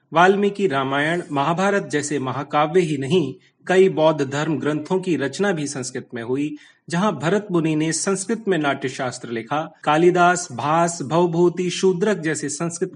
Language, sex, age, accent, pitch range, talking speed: Hindi, male, 30-49, native, 130-175 Hz, 150 wpm